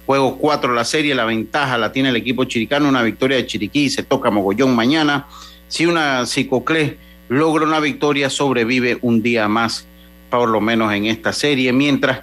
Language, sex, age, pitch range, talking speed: Spanish, male, 40-59, 110-140 Hz, 180 wpm